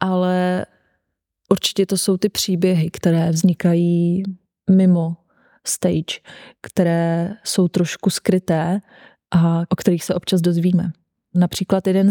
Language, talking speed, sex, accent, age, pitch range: Czech, 110 wpm, female, native, 20-39, 170-185 Hz